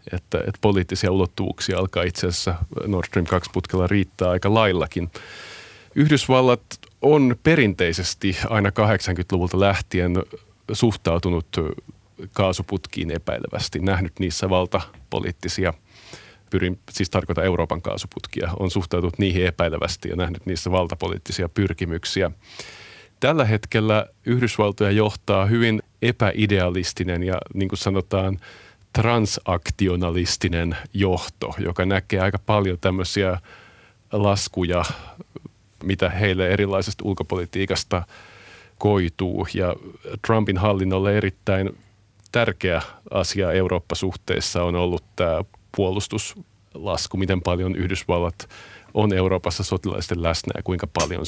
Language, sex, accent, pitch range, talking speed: Finnish, male, native, 90-105 Hz, 95 wpm